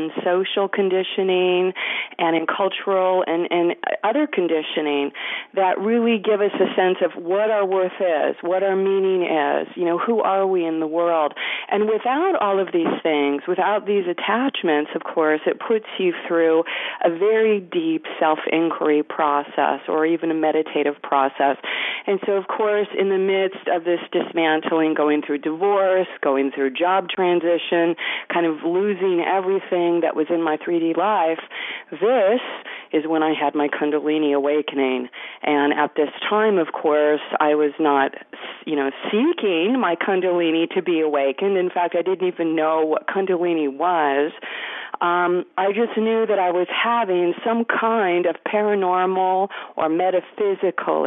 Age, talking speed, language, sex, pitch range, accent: 40-59, 155 wpm, English, female, 155-195 Hz, American